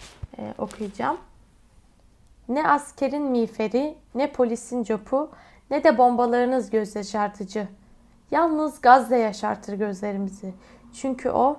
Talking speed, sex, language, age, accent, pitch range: 100 wpm, female, Turkish, 10-29, native, 225-270 Hz